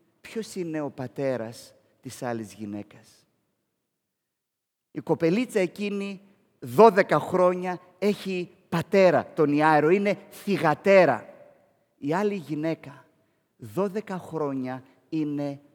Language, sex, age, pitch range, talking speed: Greek, male, 30-49, 130-185 Hz, 90 wpm